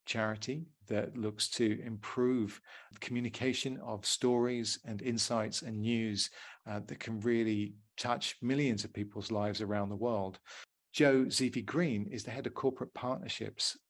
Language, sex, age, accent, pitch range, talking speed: English, male, 40-59, British, 105-125 Hz, 145 wpm